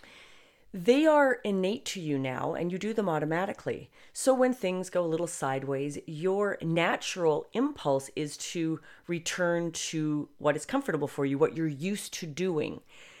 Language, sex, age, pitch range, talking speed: English, female, 30-49, 140-185 Hz, 160 wpm